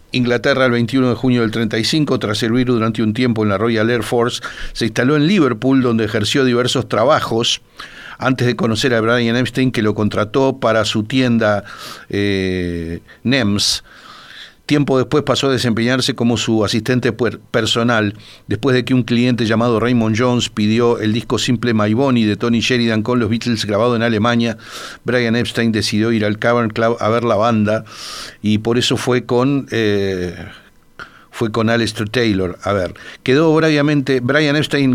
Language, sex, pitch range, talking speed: Spanish, male, 110-125 Hz, 170 wpm